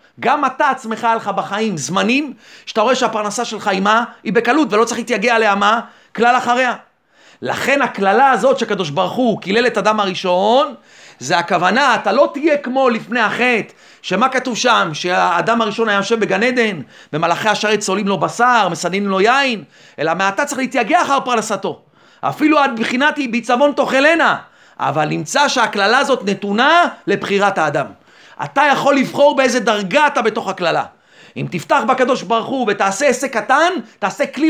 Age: 40-59